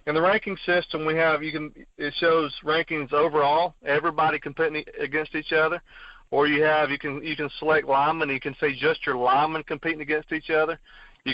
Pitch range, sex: 135-155 Hz, male